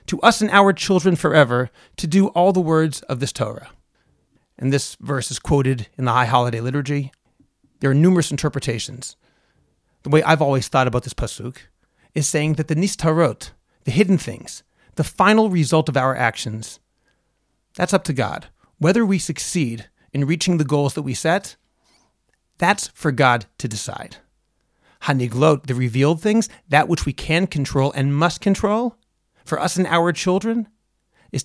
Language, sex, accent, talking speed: English, male, American, 165 wpm